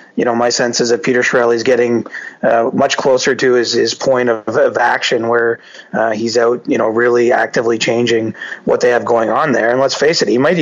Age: 30-49